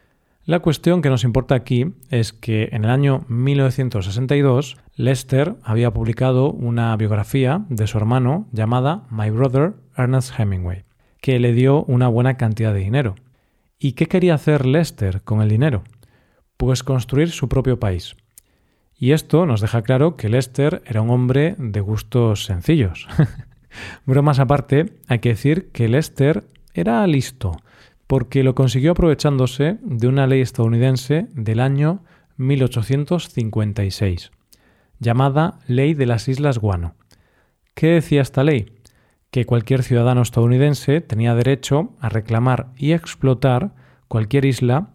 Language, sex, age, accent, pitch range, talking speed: Spanish, male, 40-59, Spanish, 115-140 Hz, 135 wpm